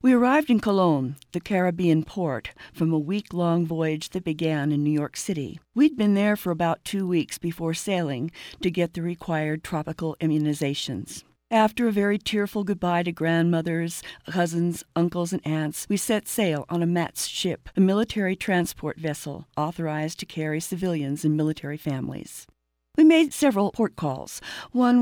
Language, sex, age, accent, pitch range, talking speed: English, female, 50-69, American, 155-185 Hz, 160 wpm